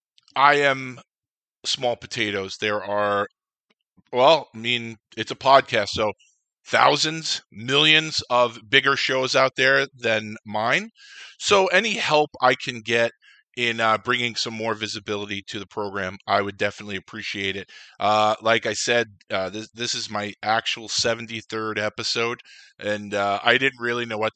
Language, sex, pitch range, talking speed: English, male, 105-125 Hz, 150 wpm